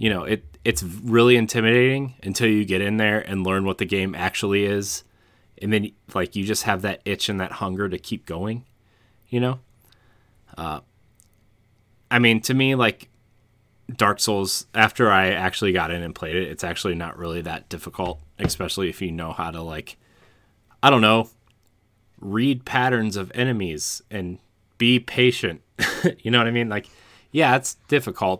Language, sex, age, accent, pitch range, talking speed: English, male, 30-49, American, 90-110 Hz, 175 wpm